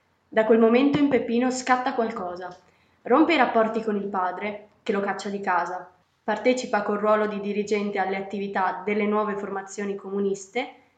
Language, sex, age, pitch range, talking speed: Italian, female, 20-39, 210-260 Hz, 160 wpm